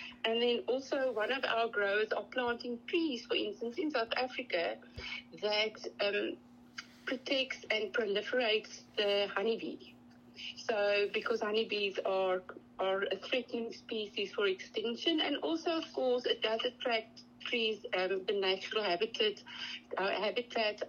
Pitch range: 205-290 Hz